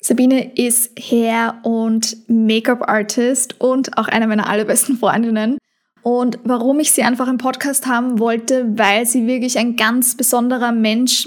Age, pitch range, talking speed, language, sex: 20-39, 235-270 Hz, 145 wpm, German, female